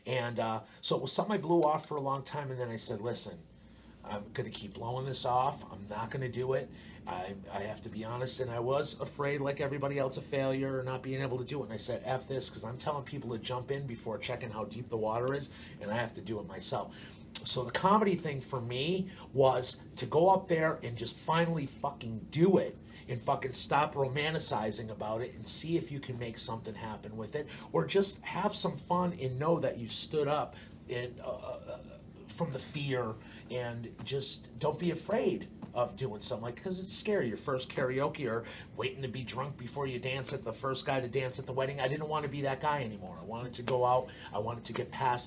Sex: male